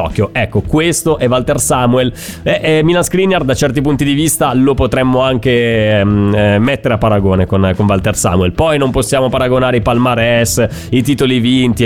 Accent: native